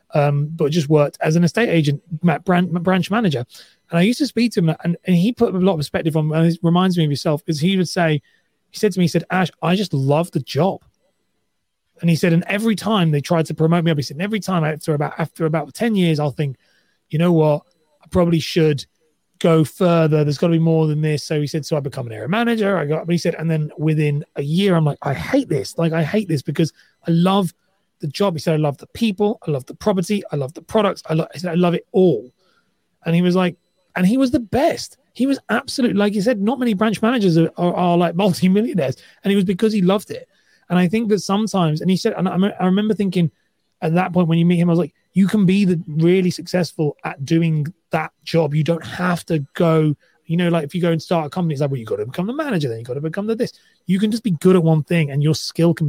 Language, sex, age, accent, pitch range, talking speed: English, male, 30-49, British, 155-190 Hz, 270 wpm